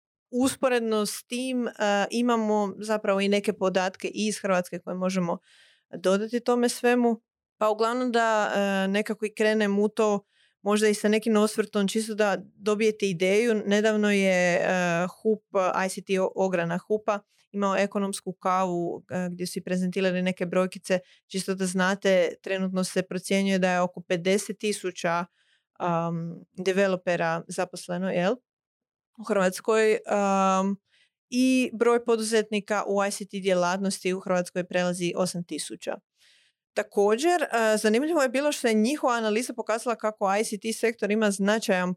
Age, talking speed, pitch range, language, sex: 30-49, 135 wpm, 185-220 Hz, Croatian, female